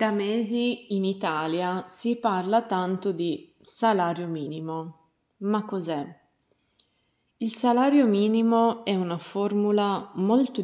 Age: 20-39